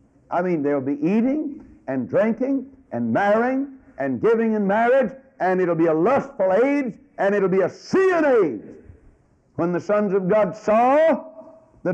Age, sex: 60-79, male